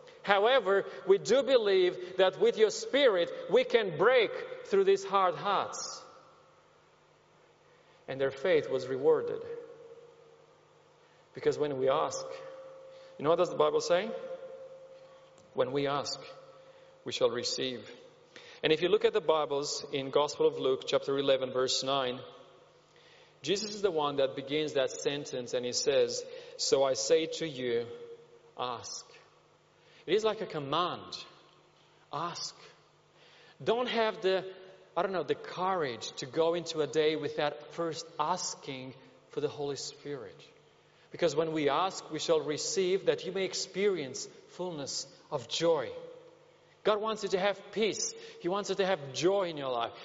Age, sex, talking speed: 40-59, male, 150 wpm